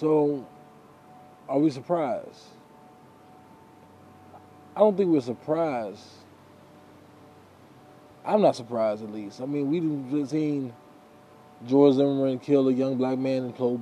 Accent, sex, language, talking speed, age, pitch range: American, male, English, 120 wpm, 20-39, 120-150 Hz